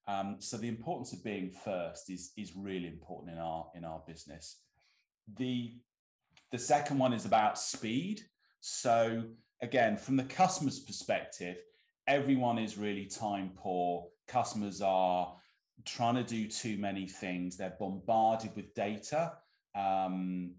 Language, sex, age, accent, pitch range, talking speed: English, male, 30-49, British, 90-115 Hz, 135 wpm